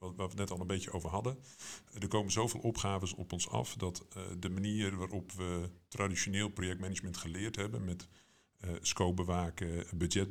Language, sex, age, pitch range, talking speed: English, male, 50-69, 90-105 Hz, 180 wpm